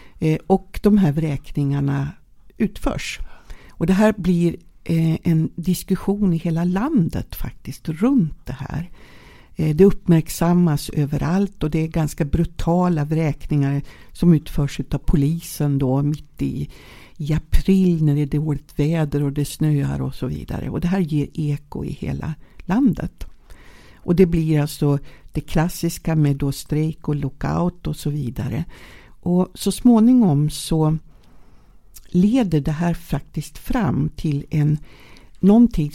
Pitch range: 145-180 Hz